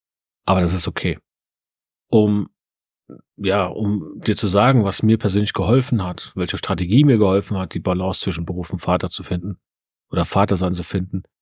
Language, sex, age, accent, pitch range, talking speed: German, male, 40-59, German, 95-115 Hz, 175 wpm